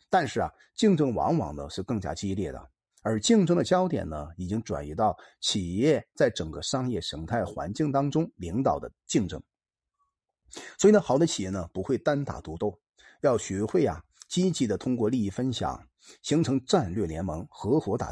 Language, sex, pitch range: Chinese, male, 90-145 Hz